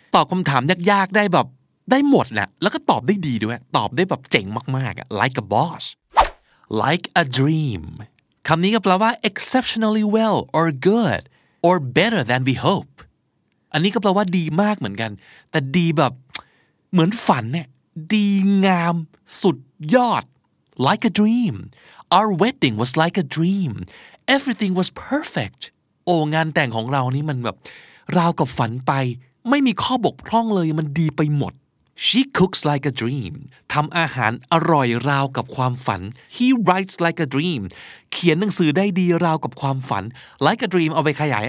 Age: 30-49